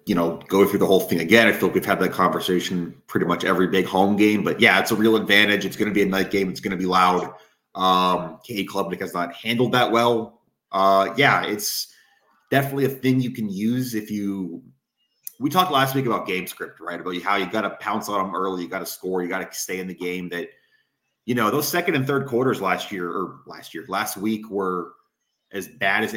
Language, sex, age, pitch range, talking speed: English, male, 30-49, 90-115 Hz, 240 wpm